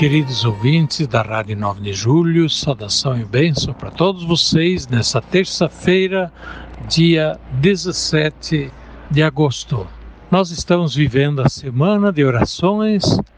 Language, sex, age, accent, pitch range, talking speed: Portuguese, male, 60-79, Brazilian, 120-165 Hz, 115 wpm